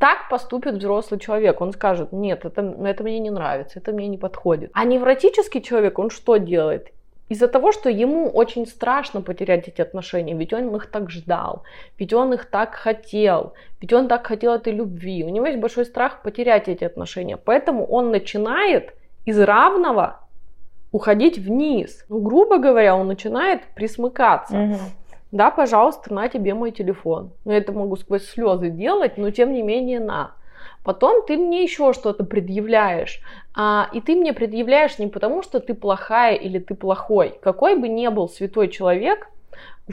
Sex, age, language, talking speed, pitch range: female, 20-39, Russian, 165 wpm, 195-245 Hz